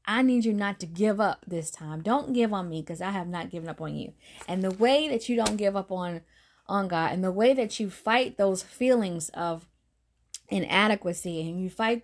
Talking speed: 225 wpm